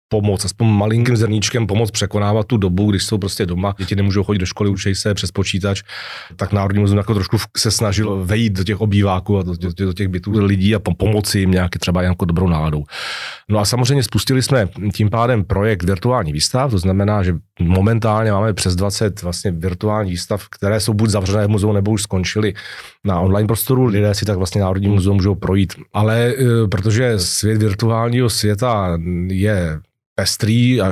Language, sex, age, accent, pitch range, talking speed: Czech, male, 30-49, native, 95-110 Hz, 180 wpm